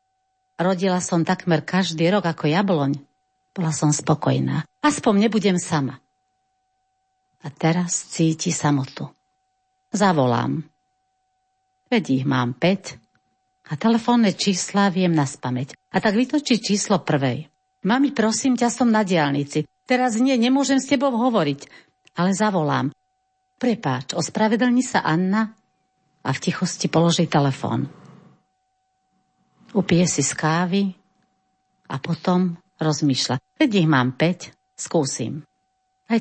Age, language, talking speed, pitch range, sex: 50-69, Slovak, 115 wpm, 155-240 Hz, female